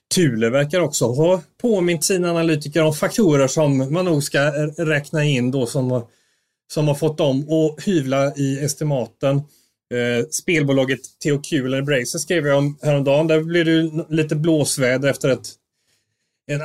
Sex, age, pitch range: male, 30-49, 125-155 Hz